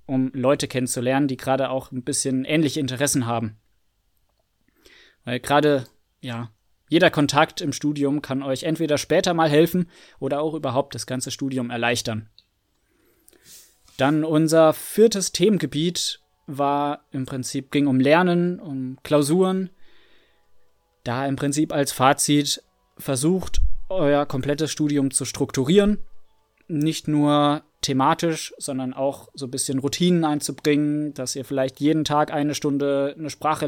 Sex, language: male, German